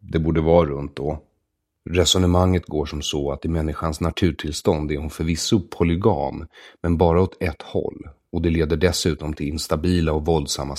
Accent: Swedish